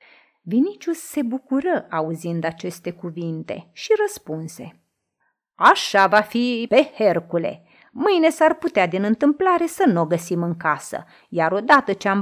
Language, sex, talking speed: Romanian, female, 135 wpm